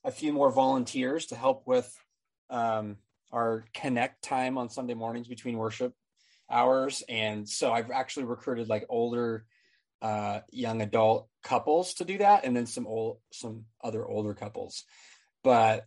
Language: English